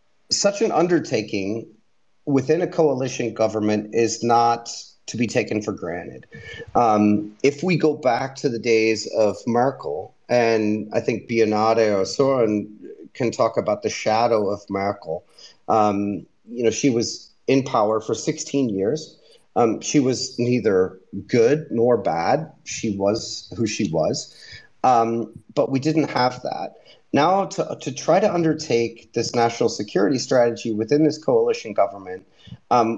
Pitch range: 105-140 Hz